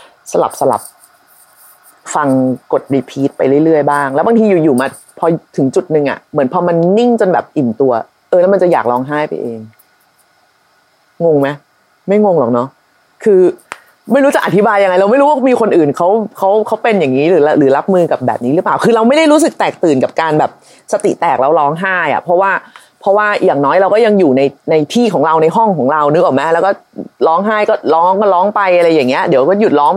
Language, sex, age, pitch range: Thai, female, 30-49, 160-235 Hz